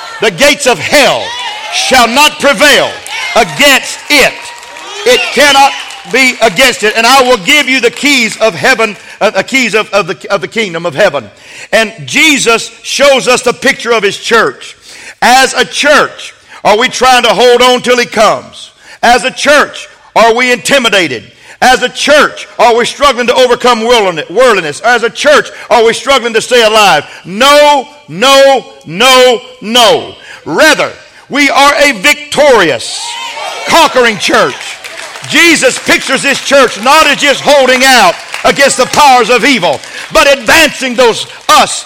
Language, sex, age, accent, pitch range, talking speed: English, male, 50-69, American, 235-290 Hz, 150 wpm